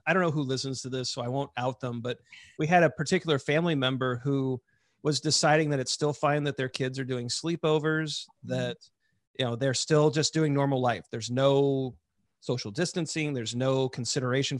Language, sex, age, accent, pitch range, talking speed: English, male, 40-59, American, 130-160 Hz, 195 wpm